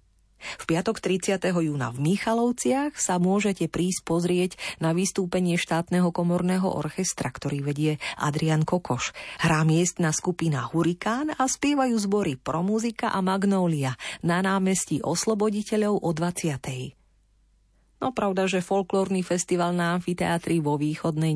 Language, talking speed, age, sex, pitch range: Slovak, 125 wpm, 40-59, female, 160-190 Hz